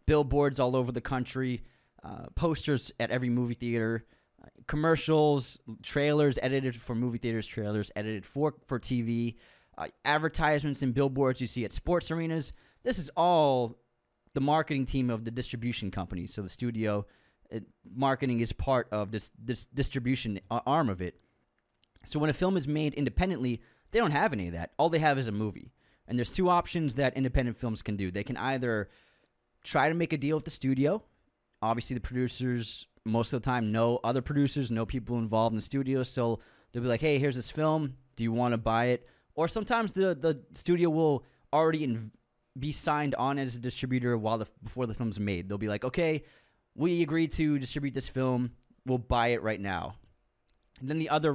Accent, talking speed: American, 190 wpm